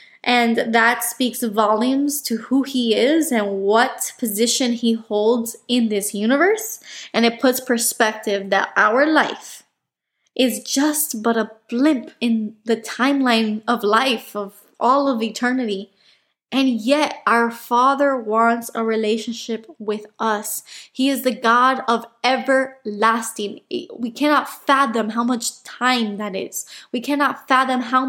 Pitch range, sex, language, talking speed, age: 220-260 Hz, female, English, 135 wpm, 10-29